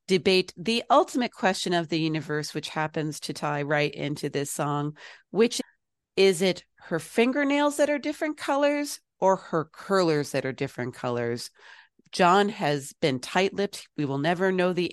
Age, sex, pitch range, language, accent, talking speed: 40-59, female, 150-190 Hz, English, American, 165 wpm